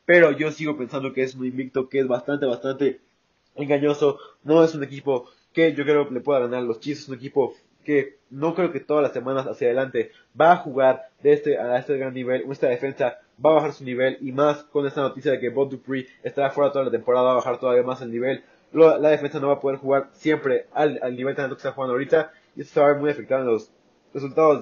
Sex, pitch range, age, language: male, 125-145 Hz, 20-39, Spanish